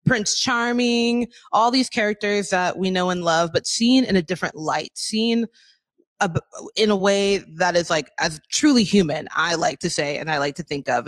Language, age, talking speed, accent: English, 20-39, 195 wpm, American